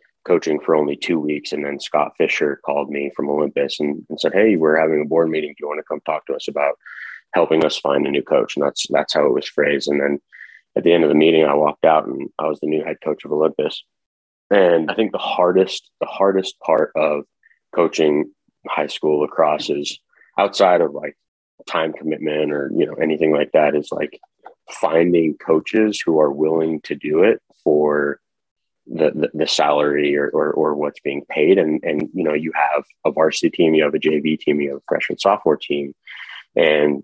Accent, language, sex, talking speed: American, English, male, 210 wpm